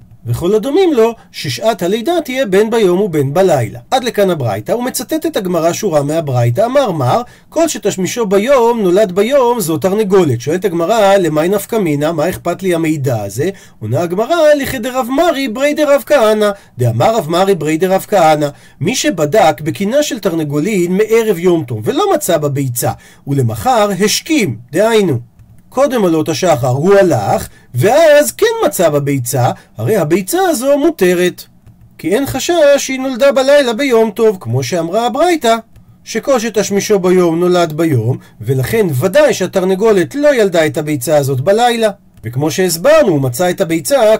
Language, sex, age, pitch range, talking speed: Hebrew, male, 40-59, 155-240 Hz, 150 wpm